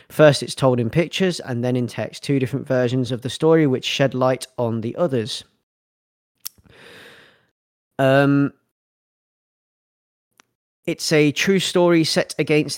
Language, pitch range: English, 120-140 Hz